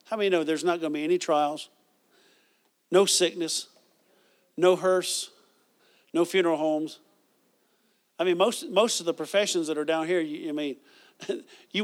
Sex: male